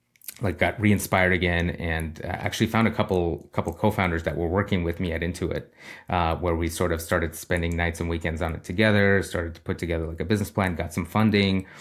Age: 30-49